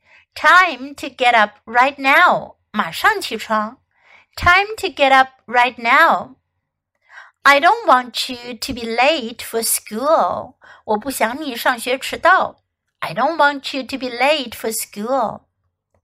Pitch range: 220-320 Hz